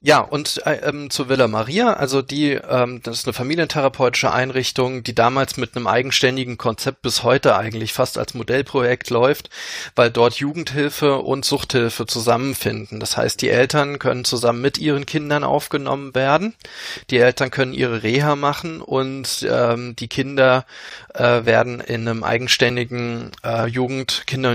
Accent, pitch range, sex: German, 115-140 Hz, male